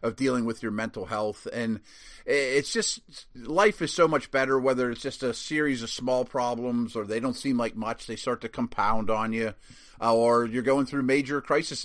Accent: American